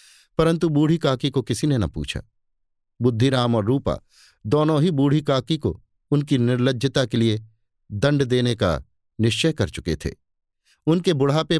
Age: 50-69